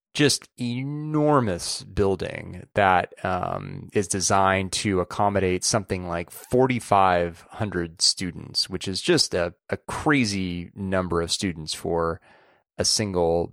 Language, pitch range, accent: English, 90-115 Hz, American